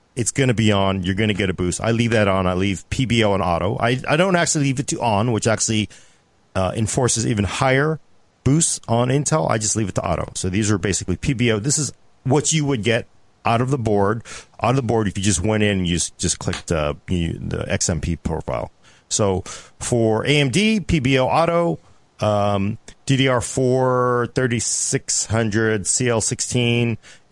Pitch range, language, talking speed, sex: 100-130 Hz, English, 180 wpm, male